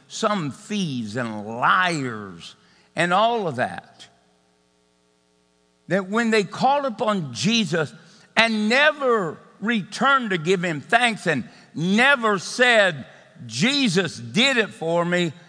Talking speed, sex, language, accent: 110 wpm, male, English, American